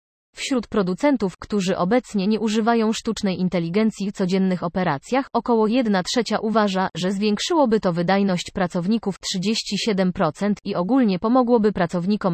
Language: Polish